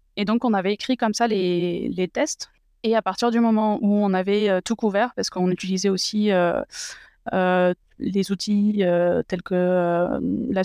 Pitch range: 185-230 Hz